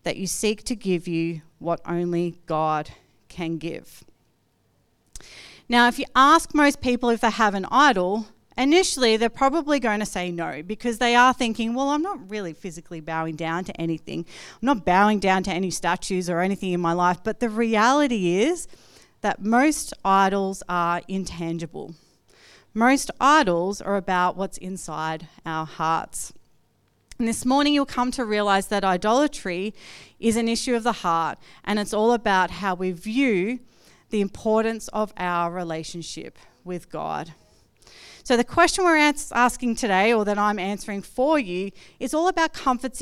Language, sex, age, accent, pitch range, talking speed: English, female, 40-59, Australian, 180-245 Hz, 160 wpm